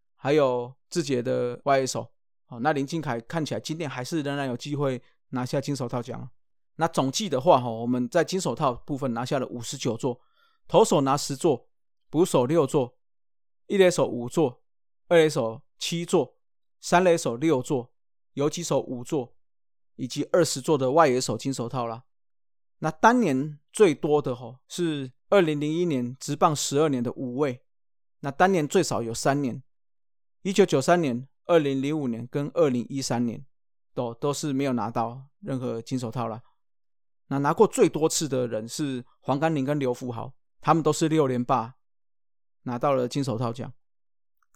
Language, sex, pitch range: Chinese, male, 125-155 Hz